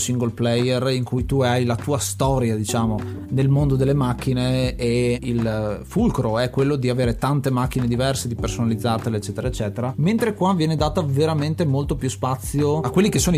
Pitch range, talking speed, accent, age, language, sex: 120-150 Hz, 180 wpm, native, 30-49, Italian, male